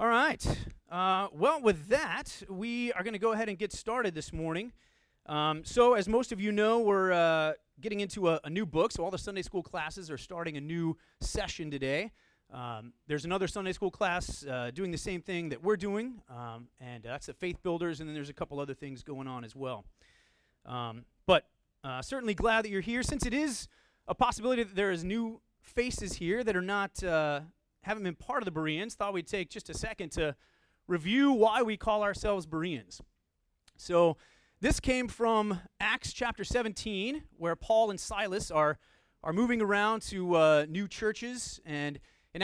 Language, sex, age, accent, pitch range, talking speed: English, male, 30-49, American, 160-215 Hz, 195 wpm